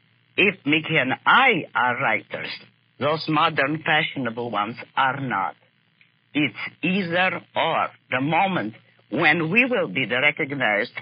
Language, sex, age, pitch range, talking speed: English, female, 60-79, 145-180 Hz, 125 wpm